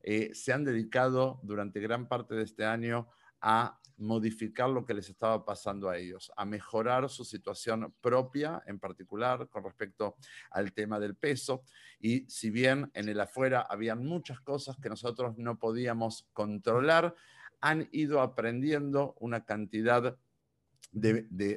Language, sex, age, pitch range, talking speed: Spanish, male, 50-69, 110-135 Hz, 145 wpm